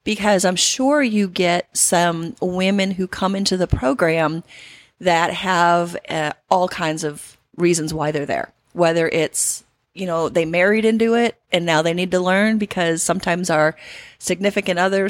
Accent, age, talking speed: American, 30-49, 165 wpm